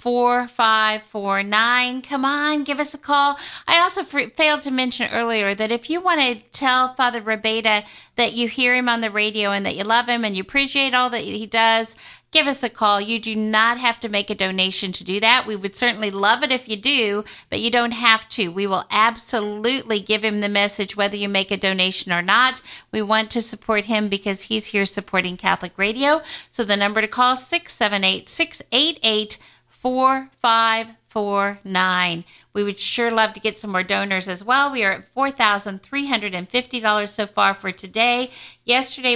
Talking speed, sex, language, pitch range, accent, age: 185 wpm, female, English, 205-250 Hz, American, 50-69